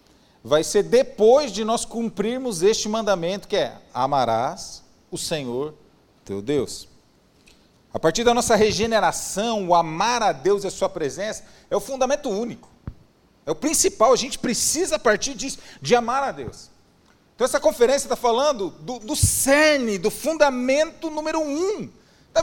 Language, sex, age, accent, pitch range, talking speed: Portuguese, male, 40-59, Brazilian, 215-295 Hz, 155 wpm